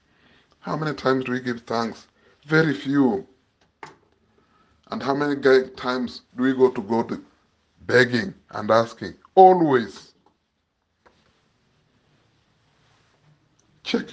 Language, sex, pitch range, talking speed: English, male, 110-145 Hz, 100 wpm